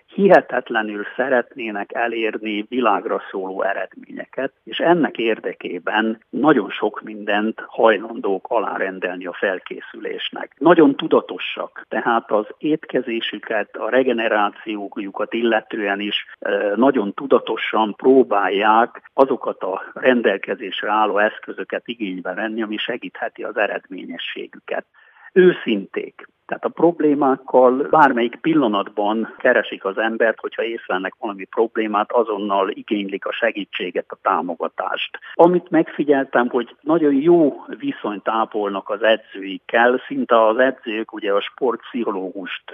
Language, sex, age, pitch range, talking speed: Hungarian, male, 50-69, 105-145 Hz, 100 wpm